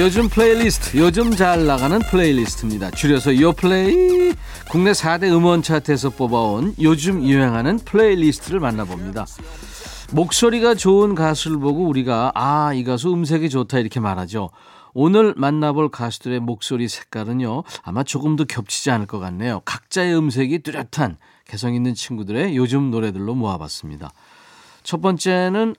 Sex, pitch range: male, 115-165 Hz